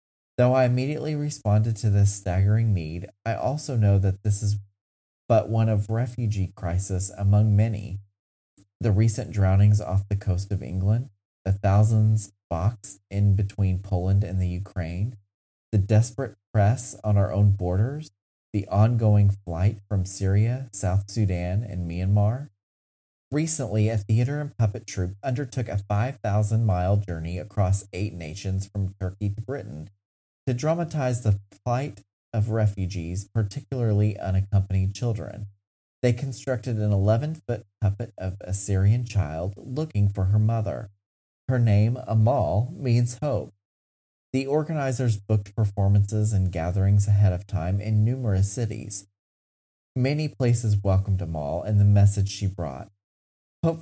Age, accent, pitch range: 30-49, American, 95-115 Hz